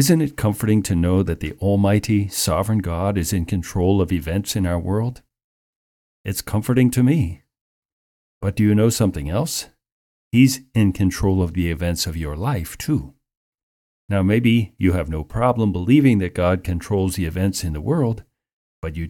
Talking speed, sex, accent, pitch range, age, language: 175 wpm, male, American, 85-110 Hz, 40-59, English